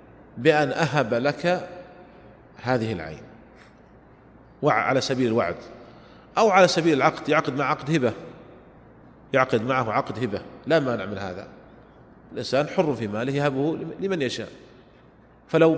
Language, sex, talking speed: Arabic, male, 125 wpm